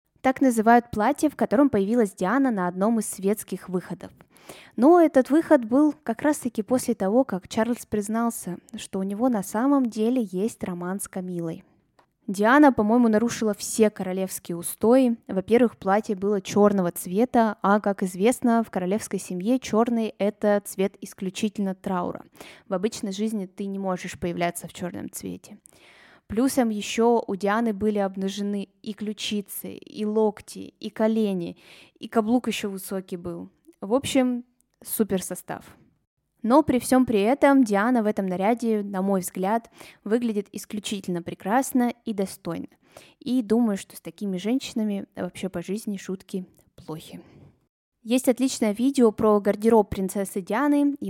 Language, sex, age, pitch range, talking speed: Russian, female, 20-39, 195-235 Hz, 140 wpm